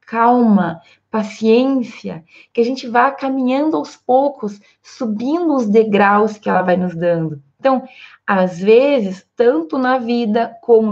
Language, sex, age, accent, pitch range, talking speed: Portuguese, female, 20-39, Brazilian, 205-255 Hz, 130 wpm